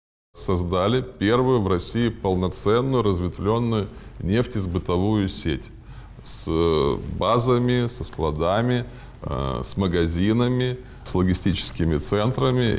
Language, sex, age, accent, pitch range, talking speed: Russian, male, 20-39, native, 85-120 Hz, 80 wpm